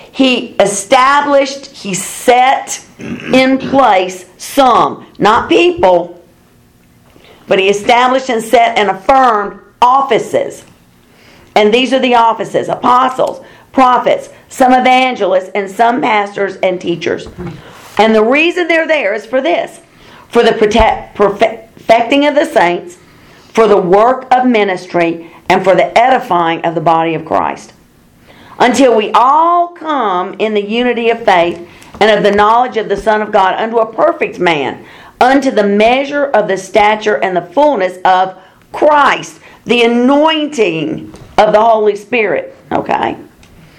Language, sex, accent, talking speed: English, female, American, 135 wpm